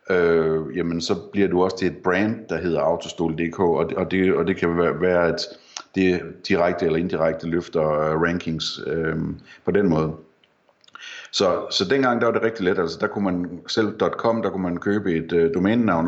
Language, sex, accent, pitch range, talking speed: Danish, male, native, 80-95 Hz, 185 wpm